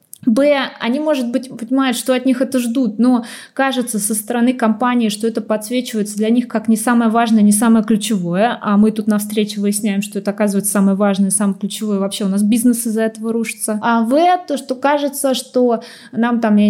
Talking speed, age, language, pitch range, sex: 200 wpm, 20-39, Russian, 205-255 Hz, female